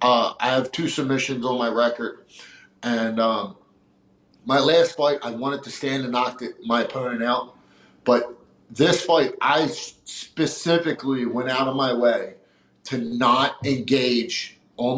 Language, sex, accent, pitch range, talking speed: English, male, American, 120-140 Hz, 145 wpm